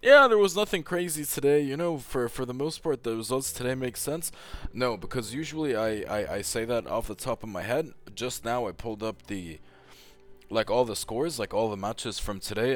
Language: English